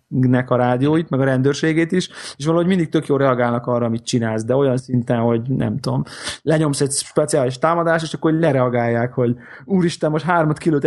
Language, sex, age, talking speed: Hungarian, male, 20-39, 195 wpm